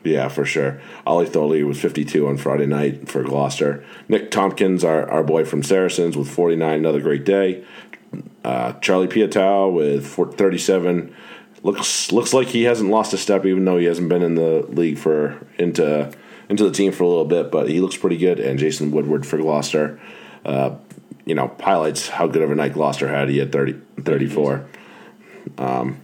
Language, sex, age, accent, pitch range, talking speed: English, male, 40-59, American, 70-95 Hz, 185 wpm